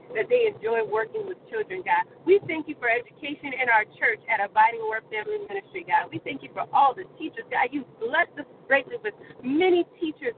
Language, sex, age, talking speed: English, female, 30-49, 210 wpm